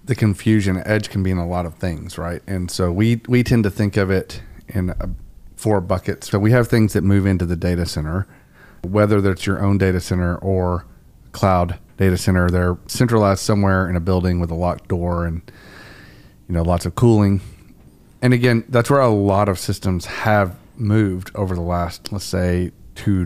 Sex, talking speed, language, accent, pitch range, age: male, 195 wpm, English, American, 90-105 Hz, 40-59